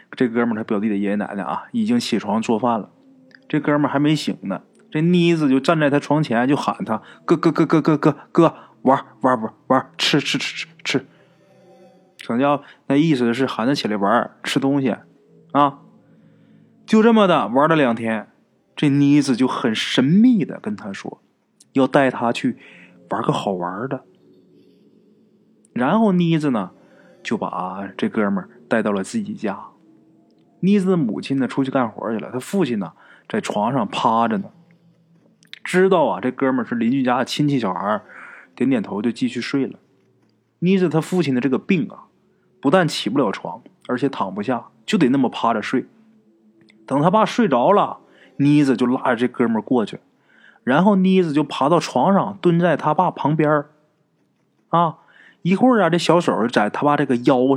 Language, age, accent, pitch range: Chinese, 20-39, native, 125-180 Hz